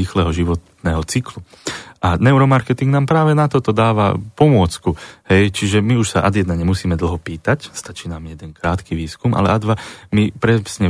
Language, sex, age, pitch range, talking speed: Slovak, male, 30-49, 95-115 Hz, 165 wpm